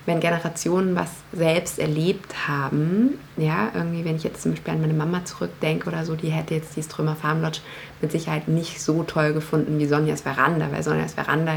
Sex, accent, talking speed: female, German, 190 wpm